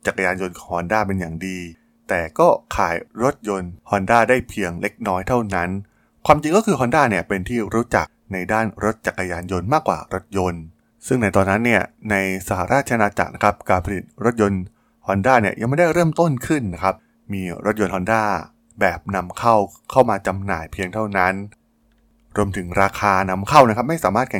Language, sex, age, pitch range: Thai, male, 20-39, 90-115 Hz